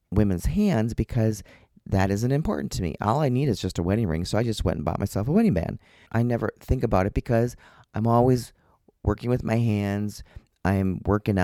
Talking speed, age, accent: 210 wpm, 40-59, American